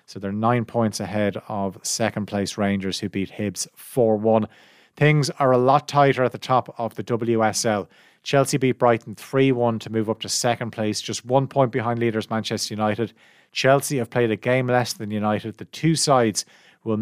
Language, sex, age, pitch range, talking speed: English, male, 30-49, 105-120 Hz, 185 wpm